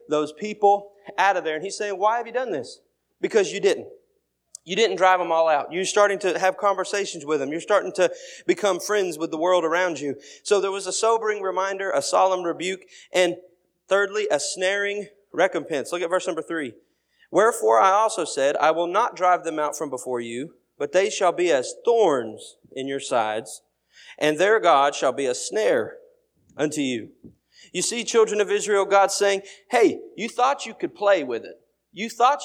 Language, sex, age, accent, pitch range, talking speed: English, male, 30-49, American, 170-220 Hz, 195 wpm